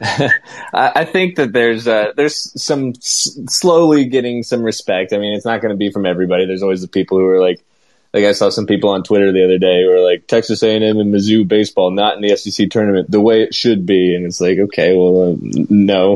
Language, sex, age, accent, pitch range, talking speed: English, male, 20-39, American, 90-110 Hz, 235 wpm